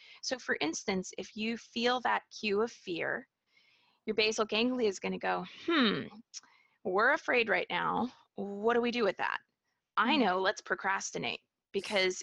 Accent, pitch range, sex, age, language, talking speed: American, 190-235 Hz, female, 20-39, English, 160 wpm